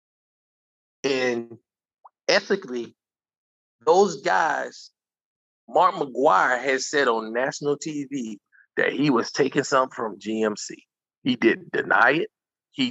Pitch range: 130-185 Hz